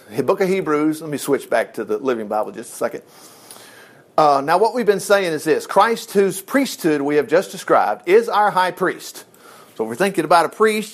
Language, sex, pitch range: English, male, 155-225 Hz